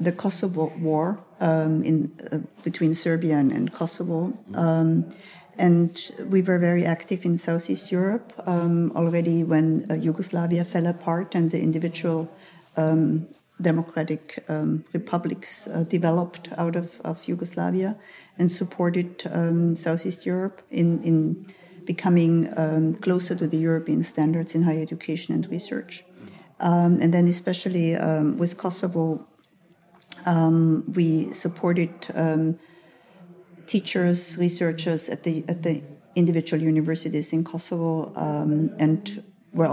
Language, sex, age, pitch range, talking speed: English, female, 50-69, 160-175 Hz, 125 wpm